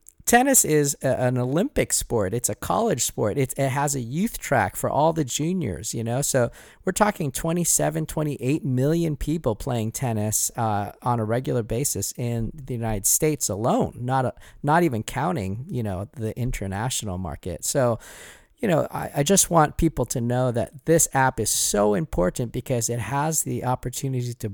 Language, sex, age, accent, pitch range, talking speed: English, male, 40-59, American, 115-150 Hz, 175 wpm